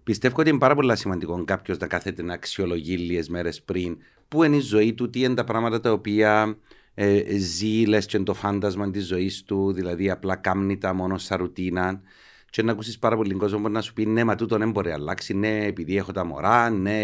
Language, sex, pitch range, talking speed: Greek, male, 95-120 Hz, 210 wpm